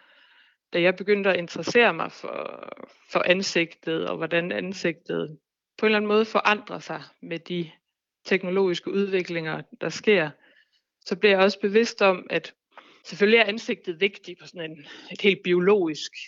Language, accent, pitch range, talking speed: Danish, native, 170-200 Hz, 155 wpm